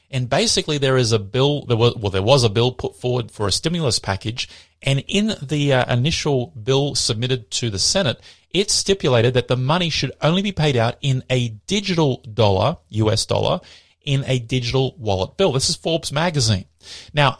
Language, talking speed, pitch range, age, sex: English, 180 wpm, 110-145 Hz, 30-49, male